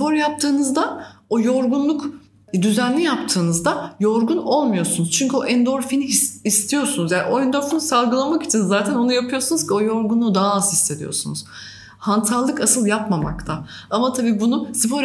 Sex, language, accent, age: female, Turkish, native, 30-49